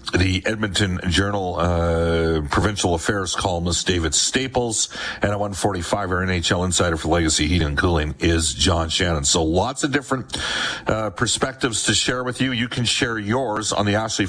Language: English